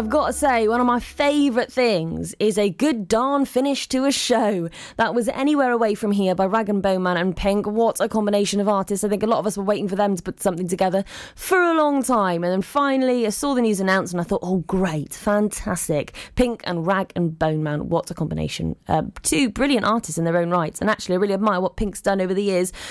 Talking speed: 250 wpm